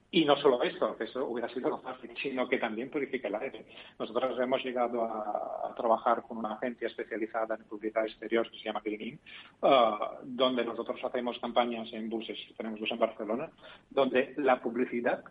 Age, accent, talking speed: 40-59, Spanish, 175 wpm